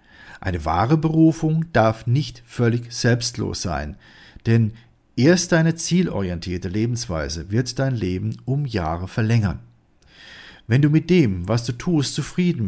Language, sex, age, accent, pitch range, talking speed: German, male, 50-69, German, 95-135 Hz, 130 wpm